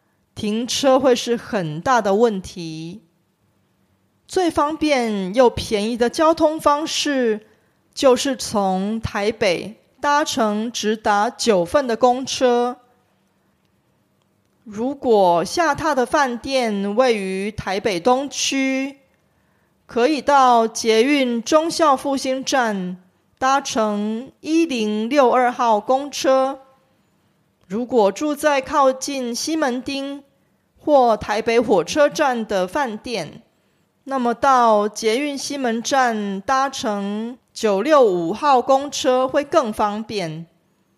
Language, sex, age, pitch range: Korean, female, 30-49, 215-280 Hz